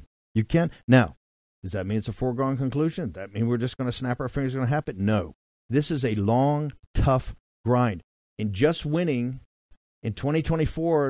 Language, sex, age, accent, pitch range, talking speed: English, male, 50-69, American, 125-170 Hz, 185 wpm